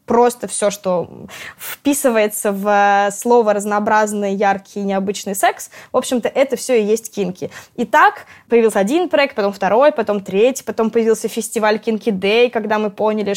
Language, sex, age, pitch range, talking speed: Russian, female, 20-39, 200-235 Hz, 155 wpm